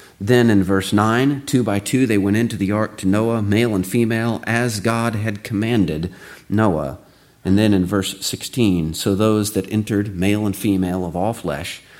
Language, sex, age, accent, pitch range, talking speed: English, male, 40-59, American, 90-110 Hz, 185 wpm